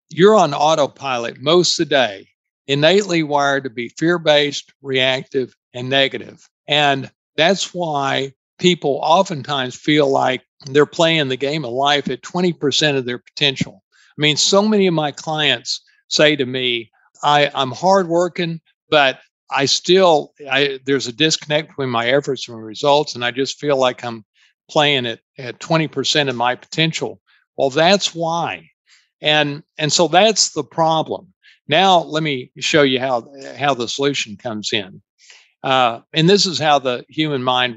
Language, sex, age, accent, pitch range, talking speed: English, male, 50-69, American, 130-160 Hz, 160 wpm